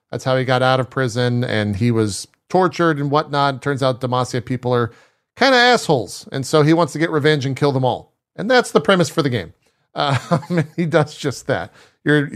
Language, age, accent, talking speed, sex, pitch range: English, 40-59, American, 235 wpm, male, 115-150 Hz